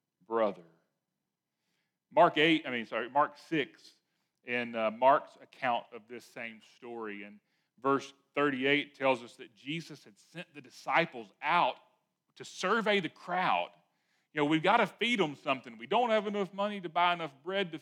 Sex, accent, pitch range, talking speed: male, American, 140-185 Hz, 170 wpm